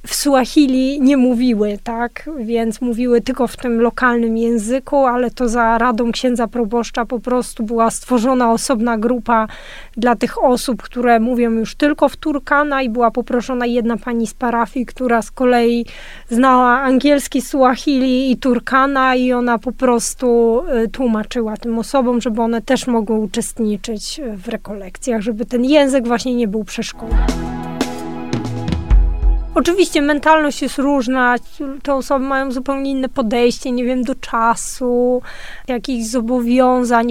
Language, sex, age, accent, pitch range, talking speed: Polish, female, 20-39, native, 235-275 Hz, 135 wpm